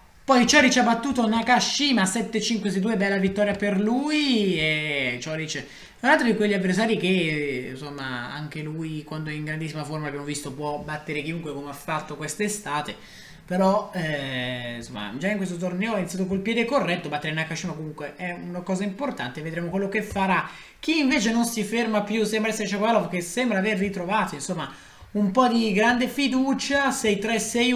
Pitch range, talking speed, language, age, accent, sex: 160-225 Hz, 170 wpm, Italian, 20-39, native, male